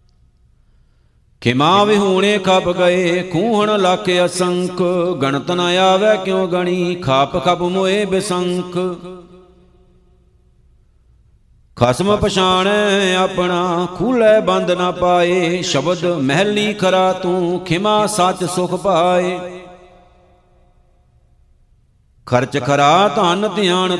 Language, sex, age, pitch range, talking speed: Punjabi, male, 50-69, 175-190 Hz, 90 wpm